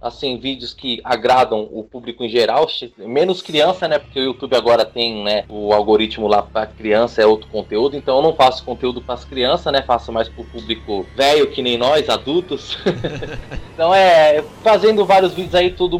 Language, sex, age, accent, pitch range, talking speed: Portuguese, male, 20-39, Brazilian, 115-150 Hz, 190 wpm